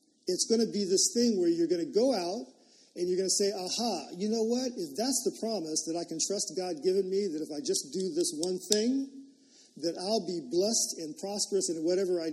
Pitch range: 180-260 Hz